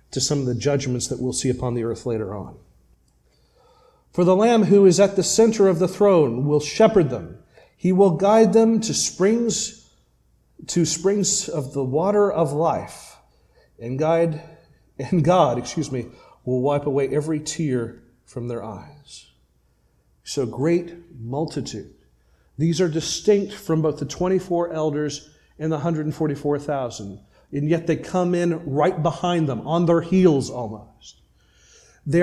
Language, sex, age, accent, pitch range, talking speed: English, male, 40-59, American, 130-180 Hz, 150 wpm